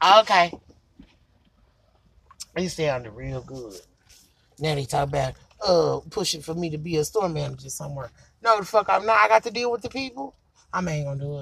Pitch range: 125-180 Hz